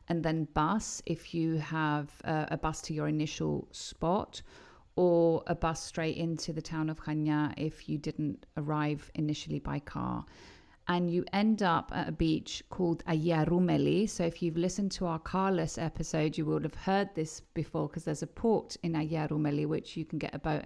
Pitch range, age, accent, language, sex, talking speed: 150-180 Hz, 40-59, British, Greek, female, 185 wpm